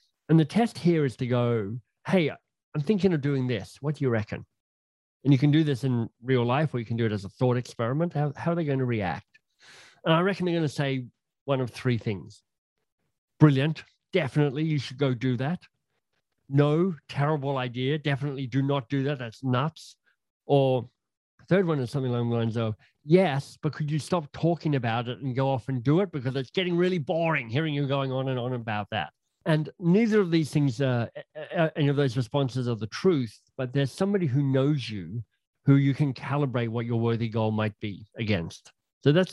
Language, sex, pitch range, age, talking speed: English, male, 120-150 Hz, 40-59, 210 wpm